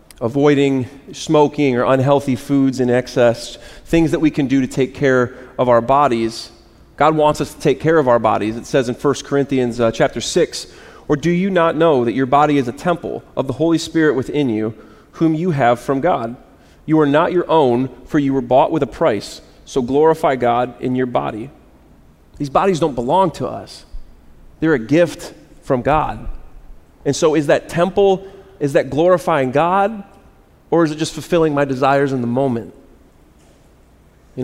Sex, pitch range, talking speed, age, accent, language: male, 125-155 Hz, 185 wpm, 30-49, American, English